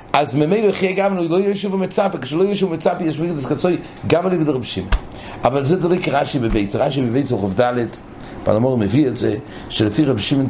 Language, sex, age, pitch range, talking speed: English, male, 60-79, 130-180 Hz, 170 wpm